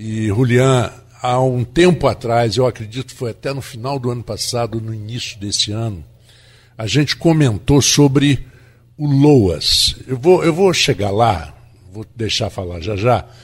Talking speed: 165 wpm